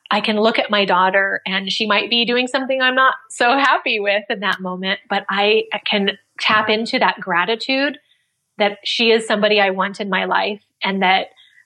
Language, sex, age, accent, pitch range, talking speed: English, female, 20-39, American, 195-235 Hz, 195 wpm